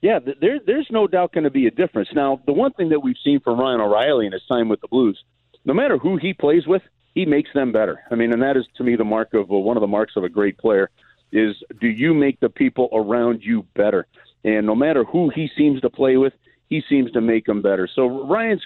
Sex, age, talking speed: male, 40-59, 260 wpm